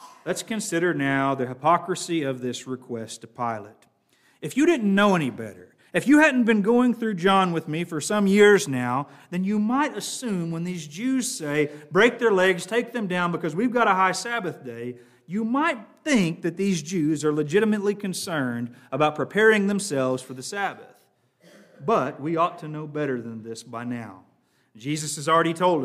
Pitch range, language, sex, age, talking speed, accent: 145-200 Hz, English, male, 40-59, 185 wpm, American